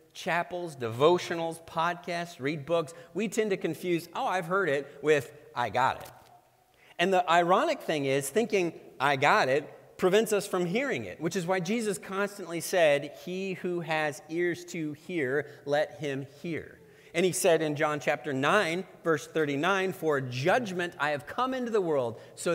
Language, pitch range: English, 145-185 Hz